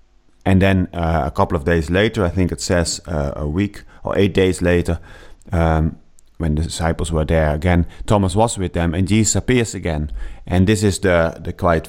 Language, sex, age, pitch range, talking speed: English, male, 30-49, 80-100 Hz, 200 wpm